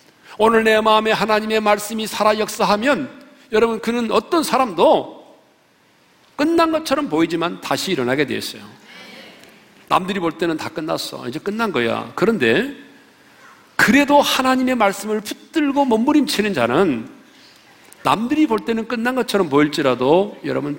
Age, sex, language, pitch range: 50-69, male, Korean, 205-280 Hz